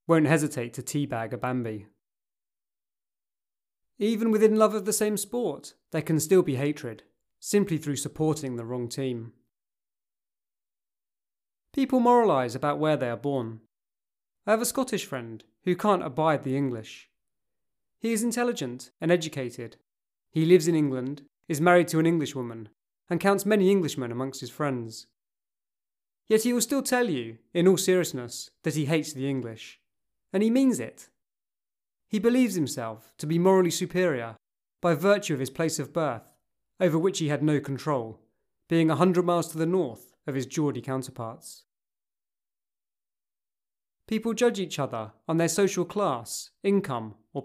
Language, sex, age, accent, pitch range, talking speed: English, male, 30-49, British, 125-190 Hz, 155 wpm